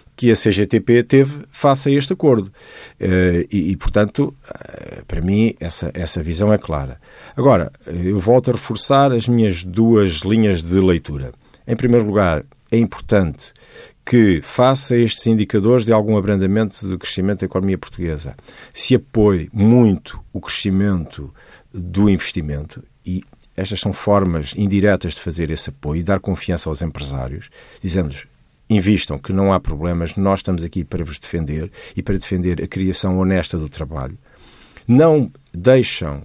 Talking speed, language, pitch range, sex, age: 145 wpm, Portuguese, 85-110 Hz, male, 50-69